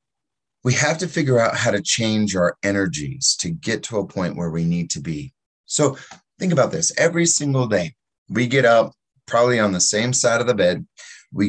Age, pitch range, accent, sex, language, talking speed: 30-49, 105-140 Hz, American, male, English, 205 wpm